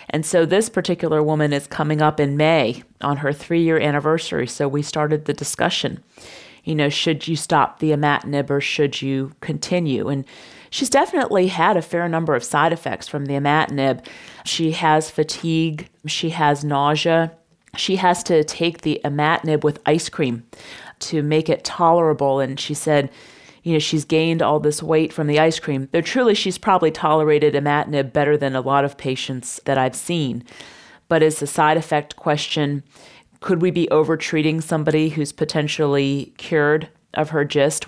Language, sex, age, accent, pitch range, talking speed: English, female, 40-59, American, 140-160 Hz, 170 wpm